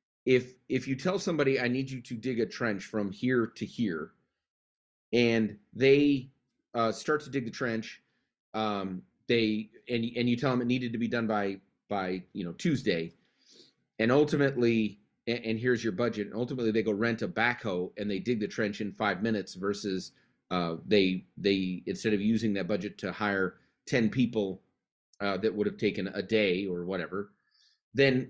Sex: male